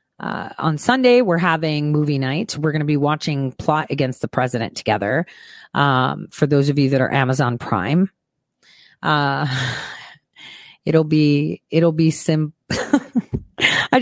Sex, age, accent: female, 30-49, American